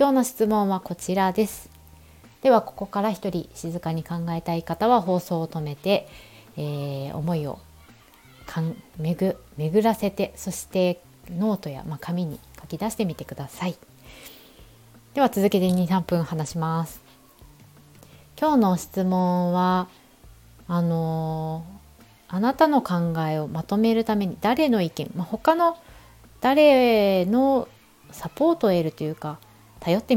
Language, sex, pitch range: Japanese, female, 155-210 Hz